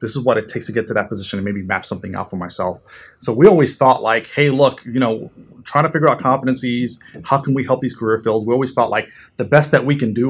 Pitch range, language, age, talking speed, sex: 110-130 Hz, English, 30-49, 280 wpm, male